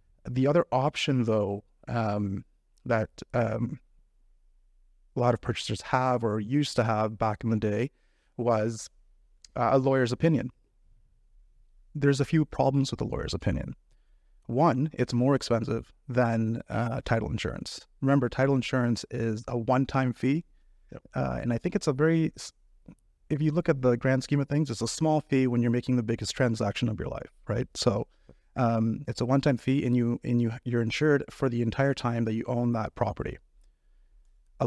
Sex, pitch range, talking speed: male, 115-135 Hz, 175 wpm